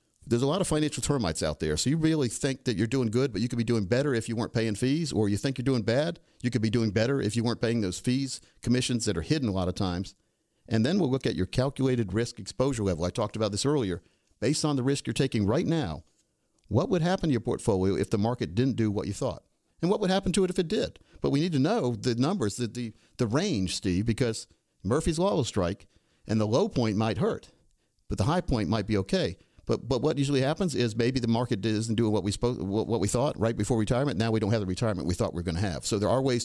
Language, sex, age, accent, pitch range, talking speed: English, male, 50-69, American, 105-135 Hz, 270 wpm